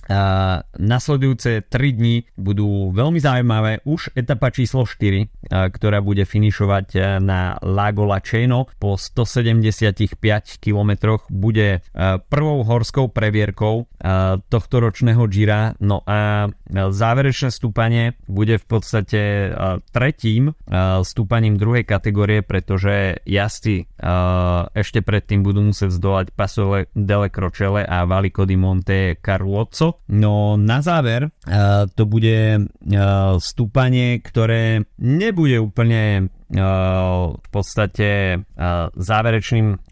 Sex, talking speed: male, 100 wpm